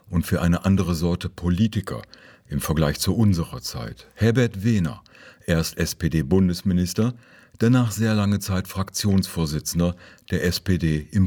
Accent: German